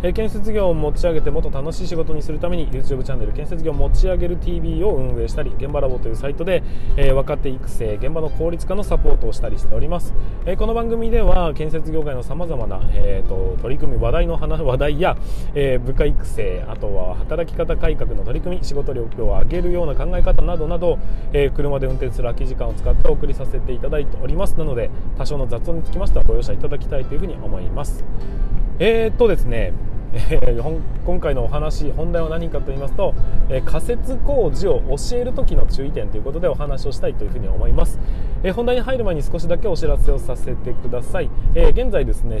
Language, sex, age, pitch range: Japanese, male, 20-39, 120-170 Hz